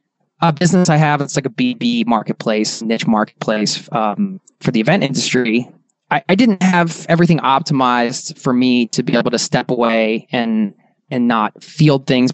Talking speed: 170 wpm